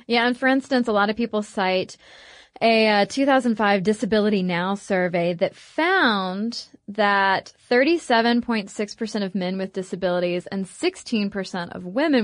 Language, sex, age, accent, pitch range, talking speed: English, female, 20-39, American, 190-240 Hz, 130 wpm